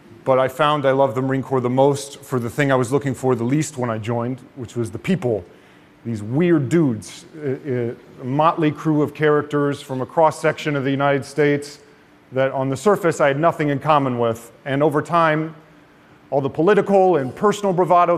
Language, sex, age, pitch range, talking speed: Arabic, male, 40-59, 120-145 Hz, 200 wpm